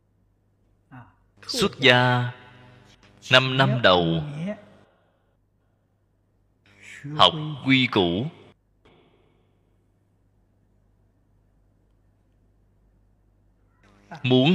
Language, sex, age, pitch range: Vietnamese, male, 30-49, 95-110 Hz